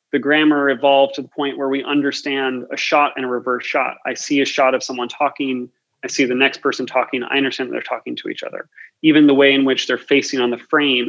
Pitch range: 125-140 Hz